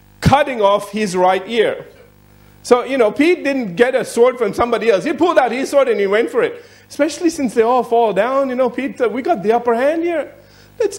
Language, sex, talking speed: English, male, 235 wpm